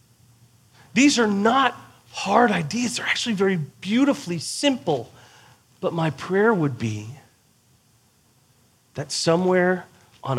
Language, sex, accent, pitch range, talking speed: English, male, American, 125-160 Hz, 105 wpm